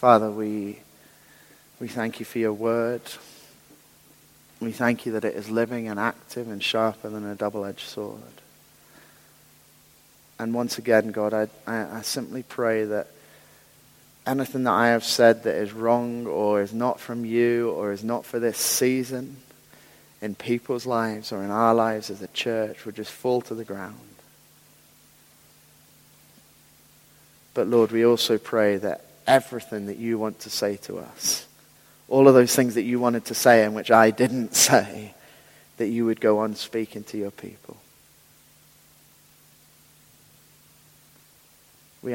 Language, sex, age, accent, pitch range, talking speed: English, male, 30-49, British, 105-120 Hz, 150 wpm